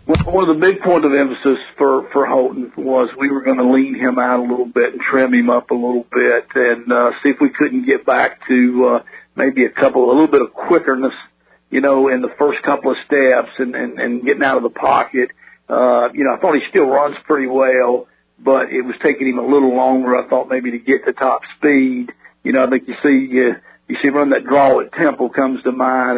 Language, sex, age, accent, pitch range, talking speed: English, male, 50-69, American, 125-140 Hz, 245 wpm